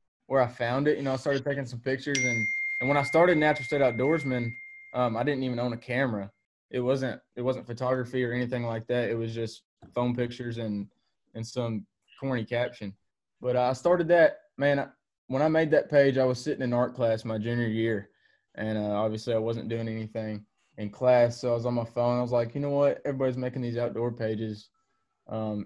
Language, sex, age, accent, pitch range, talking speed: English, male, 20-39, American, 115-125 Hz, 215 wpm